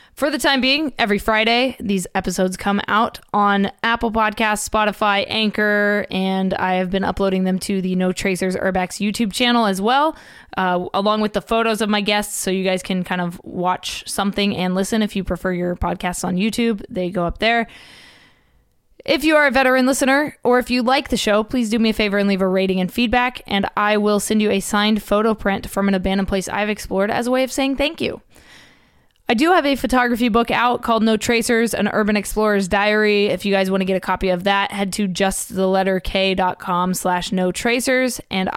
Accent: American